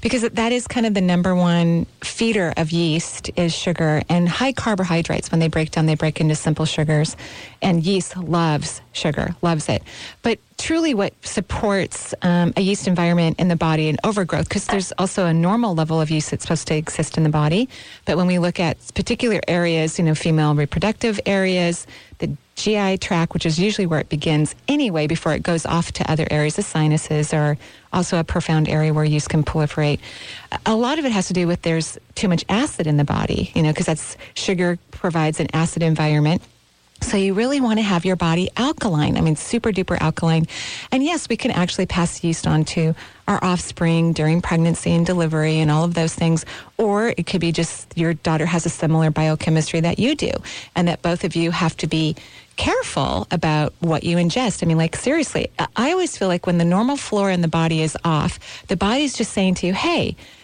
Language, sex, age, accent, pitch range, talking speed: English, female, 30-49, American, 160-195 Hz, 205 wpm